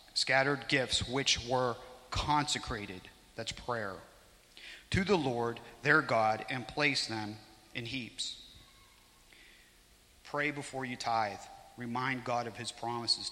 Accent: American